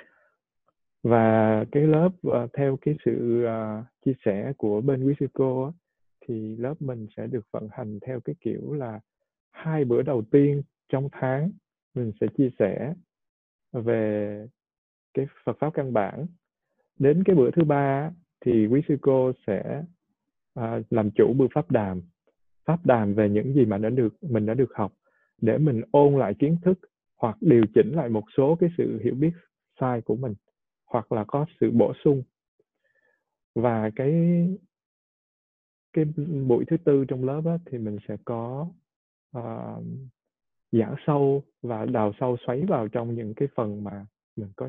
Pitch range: 110-145 Hz